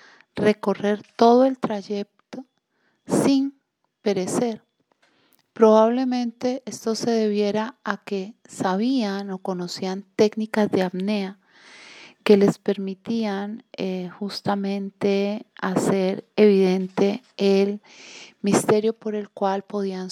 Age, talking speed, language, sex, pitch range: 40-59, 90 wpm, Spanish, female, 190-220 Hz